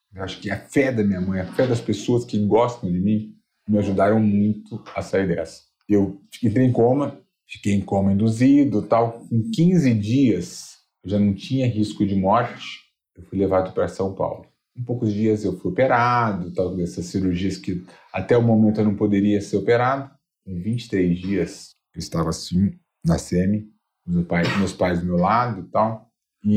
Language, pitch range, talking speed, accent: Portuguese, 95-125 Hz, 185 wpm, Brazilian